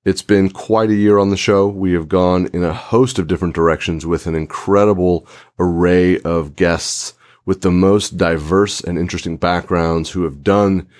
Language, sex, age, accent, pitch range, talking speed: English, male, 30-49, American, 85-105 Hz, 180 wpm